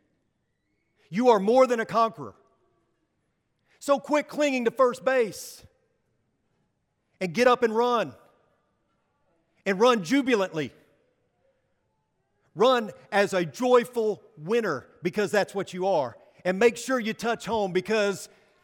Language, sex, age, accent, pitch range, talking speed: English, male, 40-59, American, 145-205 Hz, 120 wpm